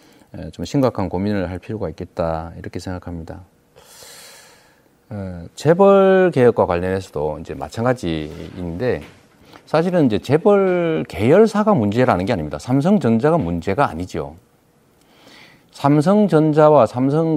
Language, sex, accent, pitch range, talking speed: English, male, Korean, 90-145 Hz, 85 wpm